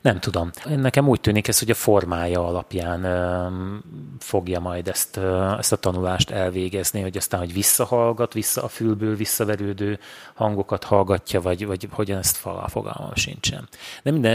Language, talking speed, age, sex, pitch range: Hungarian, 145 wpm, 30-49, male, 95-115 Hz